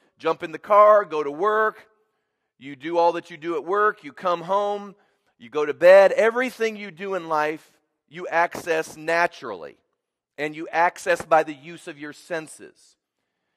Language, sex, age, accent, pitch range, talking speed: English, male, 40-59, American, 145-205 Hz, 175 wpm